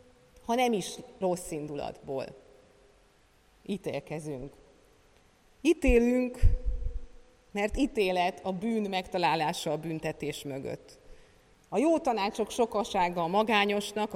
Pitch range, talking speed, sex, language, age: 160-230 Hz, 90 wpm, female, Hungarian, 30-49